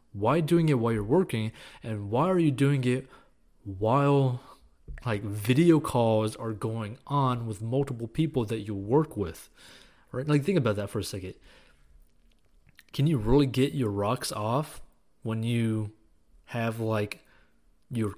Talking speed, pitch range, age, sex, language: 150 wpm, 105-135 Hz, 30-49, male, English